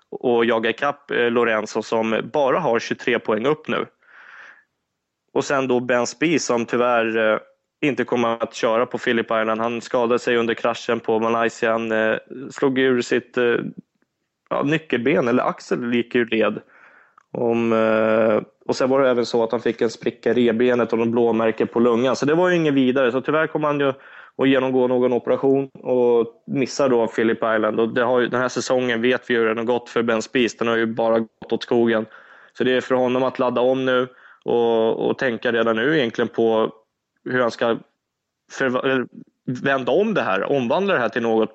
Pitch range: 115-130 Hz